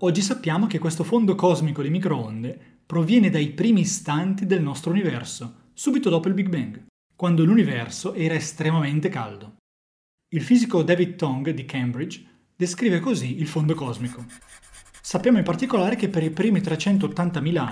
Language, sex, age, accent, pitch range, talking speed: Italian, male, 30-49, native, 145-195 Hz, 150 wpm